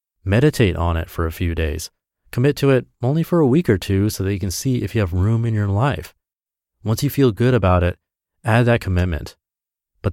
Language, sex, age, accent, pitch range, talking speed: English, male, 30-49, American, 95-130 Hz, 225 wpm